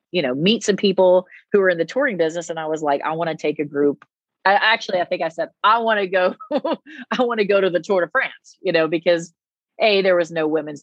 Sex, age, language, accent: female, 30-49, English, American